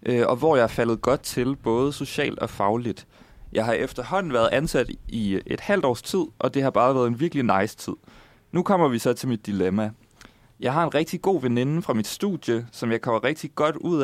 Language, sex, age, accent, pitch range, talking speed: Danish, male, 30-49, native, 110-150 Hz, 220 wpm